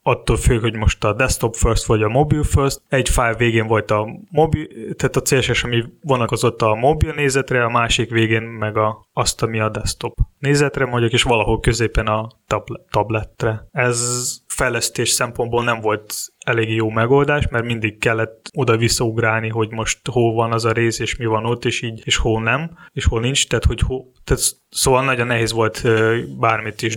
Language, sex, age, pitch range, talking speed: Hungarian, male, 20-39, 110-125 Hz, 185 wpm